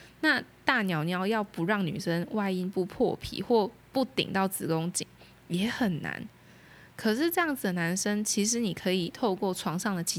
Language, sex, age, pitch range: Chinese, female, 20-39, 175-215 Hz